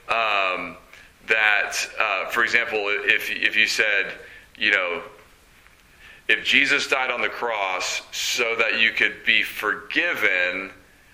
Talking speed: 125 wpm